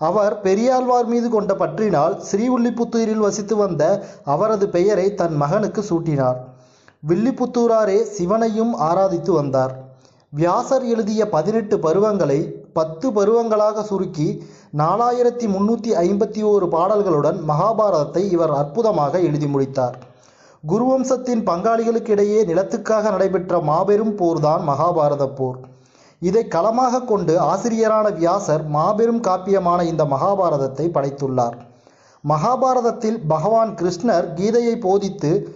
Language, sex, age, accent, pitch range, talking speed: Tamil, male, 30-49, native, 155-220 Hz, 90 wpm